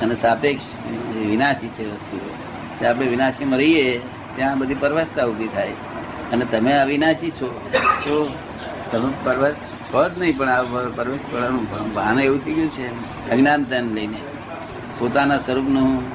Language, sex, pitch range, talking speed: Gujarati, male, 115-145 Hz, 130 wpm